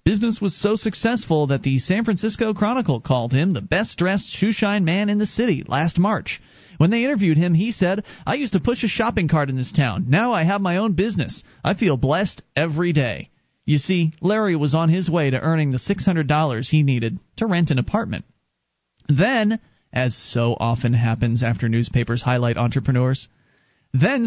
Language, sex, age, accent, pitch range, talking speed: English, male, 40-59, American, 135-195 Hz, 185 wpm